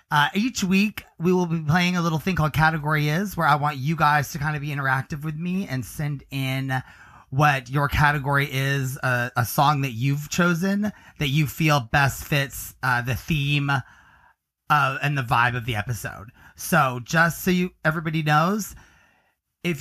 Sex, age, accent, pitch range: male, 30-49, American, 125-160 Hz